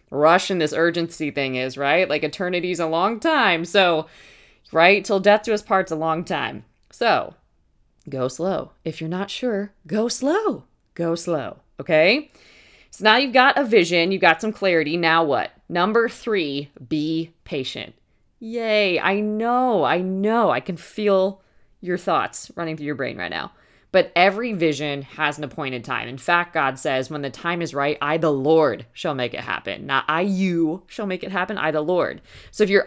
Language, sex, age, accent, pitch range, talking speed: English, female, 20-39, American, 155-205 Hz, 185 wpm